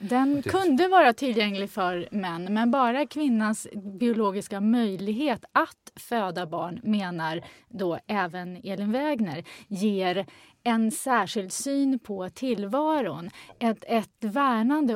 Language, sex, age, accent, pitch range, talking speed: Swedish, female, 30-49, native, 180-235 Hz, 110 wpm